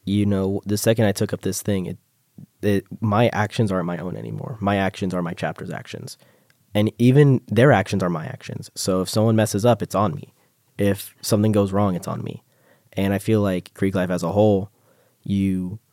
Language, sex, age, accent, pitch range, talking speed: English, male, 20-39, American, 90-105 Hz, 205 wpm